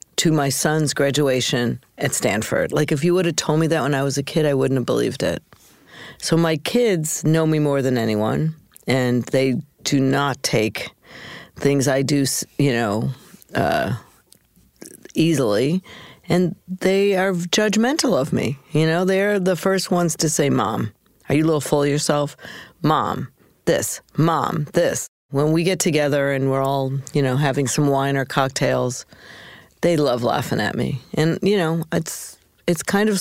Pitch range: 140-180 Hz